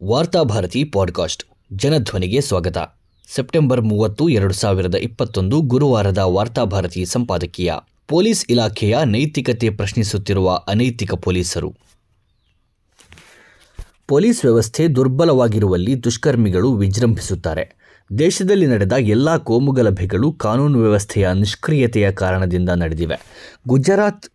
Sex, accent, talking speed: male, native, 85 wpm